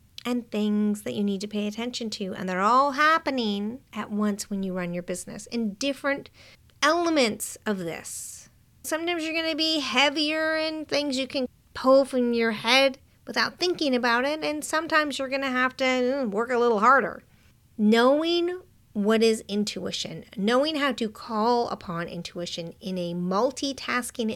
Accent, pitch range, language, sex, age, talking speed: American, 190-270 Hz, English, female, 40-59, 165 wpm